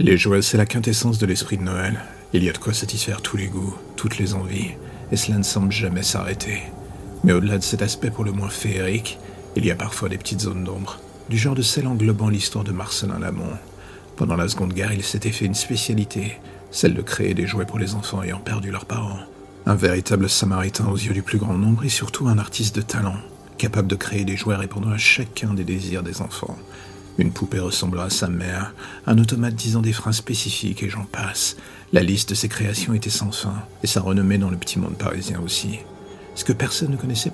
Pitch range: 95-110 Hz